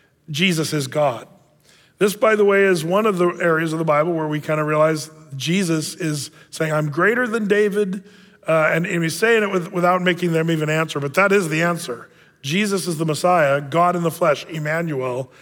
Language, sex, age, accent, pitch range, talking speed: English, male, 40-59, American, 150-190 Hz, 200 wpm